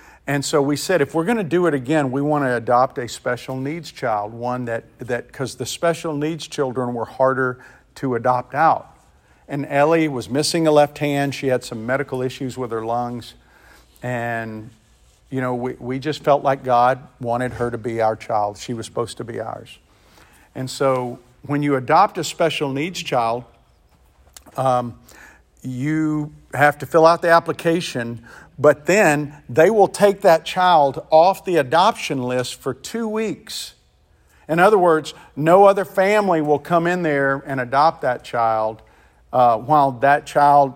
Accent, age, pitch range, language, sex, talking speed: American, 50-69, 125-155 Hz, English, male, 170 wpm